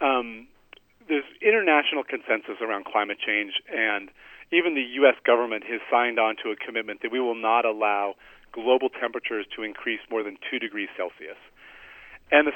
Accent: American